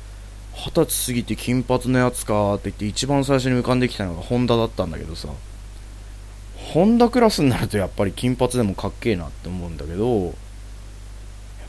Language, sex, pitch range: Japanese, male, 100-115 Hz